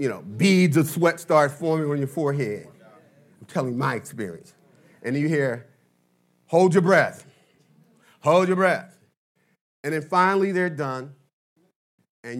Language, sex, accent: English, male, American